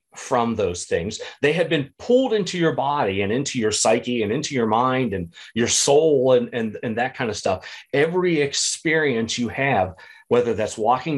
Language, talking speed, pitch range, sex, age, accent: English, 185 wpm, 125-160 Hz, male, 40-59, American